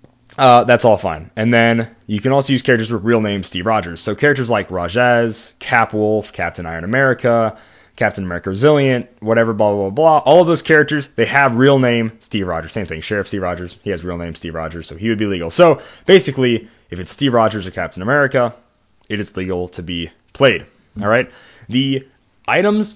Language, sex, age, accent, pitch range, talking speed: English, male, 30-49, American, 100-135 Hz, 205 wpm